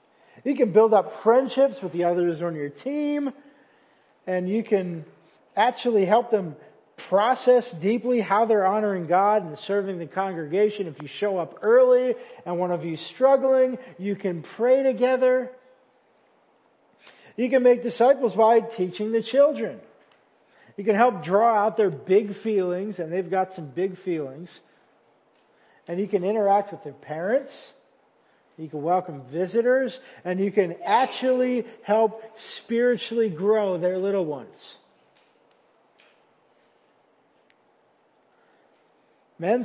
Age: 40-59